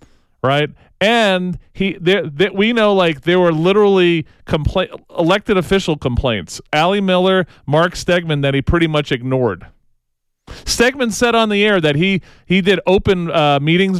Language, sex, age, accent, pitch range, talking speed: English, male, 40-59, American, 120-180 Hz, 155 wpm